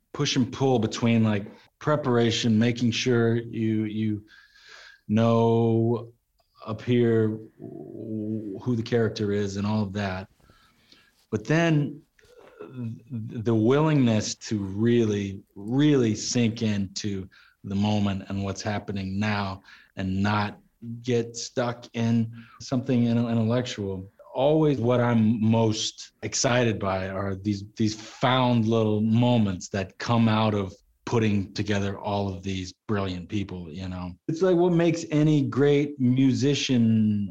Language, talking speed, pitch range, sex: English, 120 wpm, 105-125 Hz, male